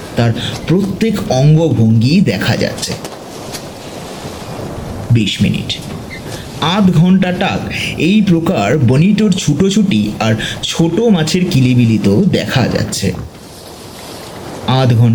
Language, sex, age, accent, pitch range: Bengali, male, 50-69, native, 130-210 Hz